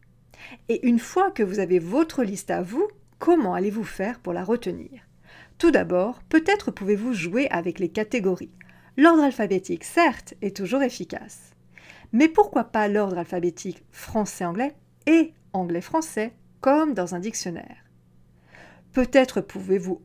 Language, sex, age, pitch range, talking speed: French, female, 50-69, 180-280 Hz, 130 wpm